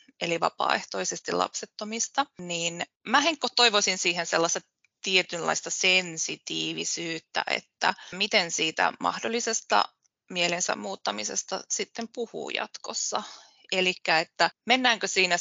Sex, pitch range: female, 170-225 Hz